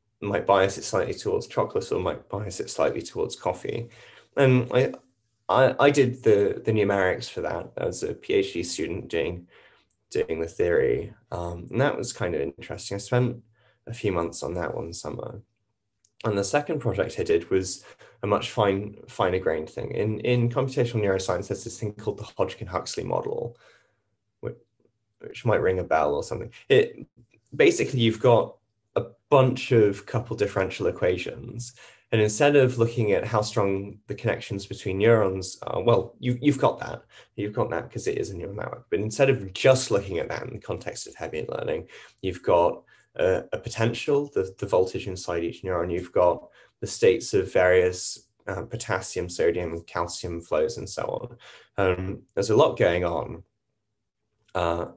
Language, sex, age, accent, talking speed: English, male, 20-39, British, 175 wpm